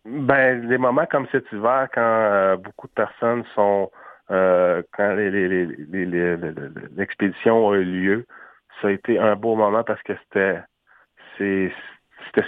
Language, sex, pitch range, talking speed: French, male, 95-110 Hz, 175 wpm